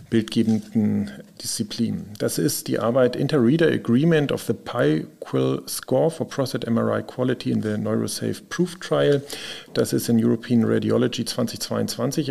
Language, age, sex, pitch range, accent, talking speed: German, 40-59, male, 115-140 Hz, German, 130 wpm